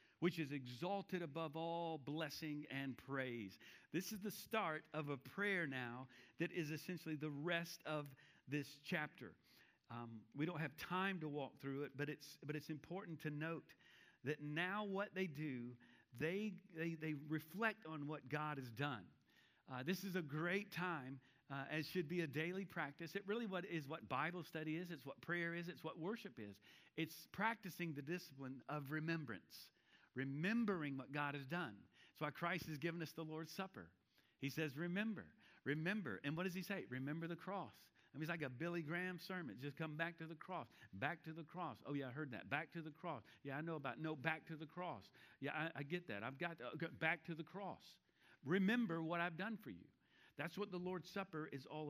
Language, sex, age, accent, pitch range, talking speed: English, male, 50-69, American, 145-180 Hz, 205 wpm